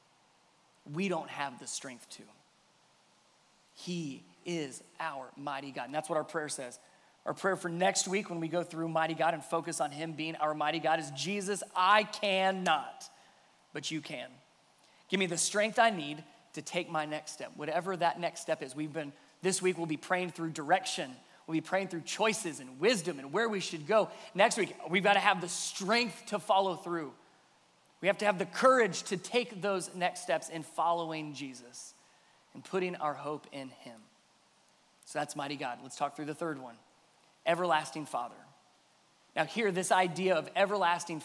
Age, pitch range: 20-39, 160-205 Hz